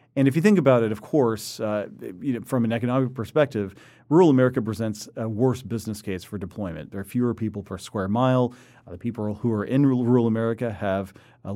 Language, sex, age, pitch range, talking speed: English, male, 40-59, 100-130 Hz, 205 wpm